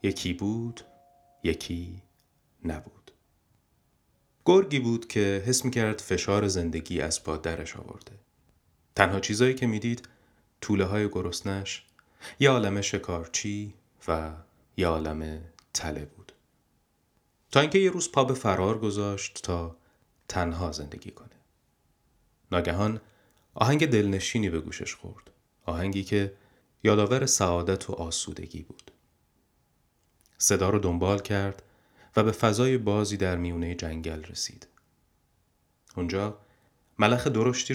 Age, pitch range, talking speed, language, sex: 30-49, 85-110 Hz, 115 wpm, Persian, male